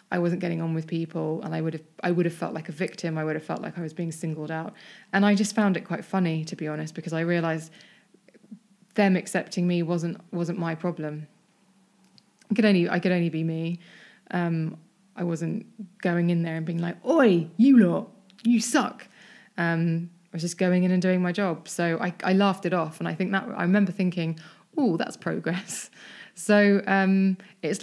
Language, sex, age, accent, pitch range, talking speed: English, female, 20-39, British, 165-200 Hz, 210 wpm